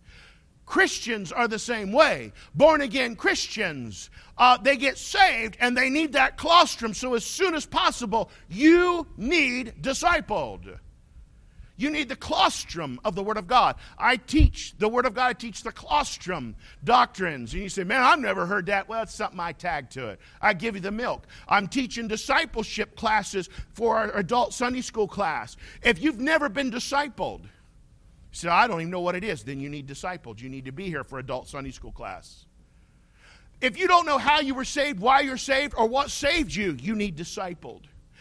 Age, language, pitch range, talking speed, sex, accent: 50-69, English, 205-290 Hz, 190 wpm, male, American